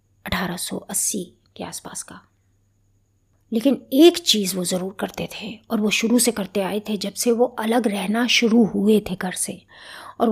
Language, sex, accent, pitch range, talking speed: Hindi, female, native, 185-240 Hz, 170 wpm